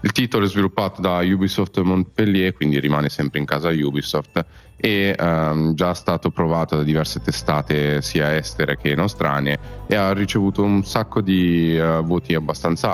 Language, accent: Italian, native